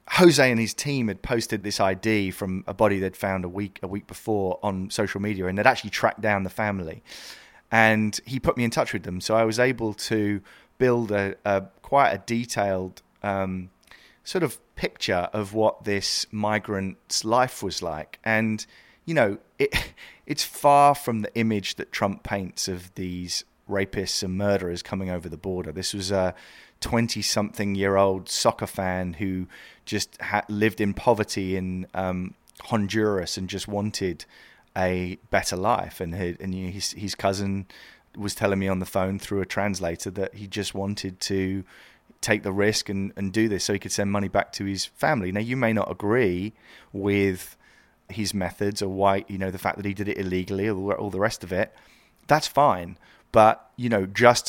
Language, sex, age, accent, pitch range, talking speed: English, male, 30-49, British, 95-110 Hz, 180 wpm